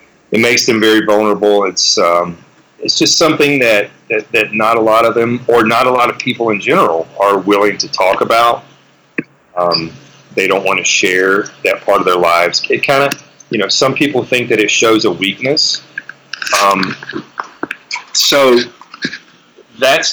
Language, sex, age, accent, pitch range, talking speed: English, male, 40-59, American, 95-125 Hz, 175 wpm